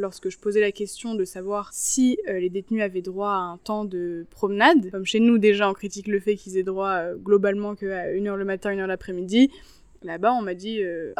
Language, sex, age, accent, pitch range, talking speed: French, female, 20-39, French, 190-245 Hz, 235 wpm